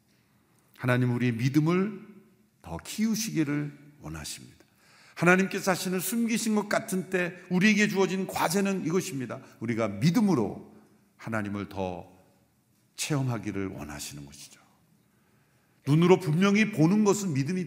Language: Korean